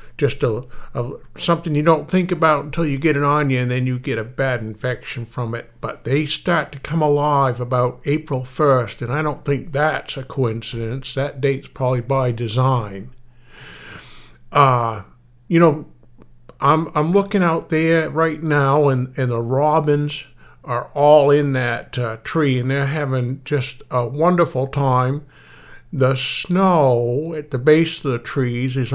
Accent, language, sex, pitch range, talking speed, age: American, English, male, 125-160 Hz, 165 wpm, 50-69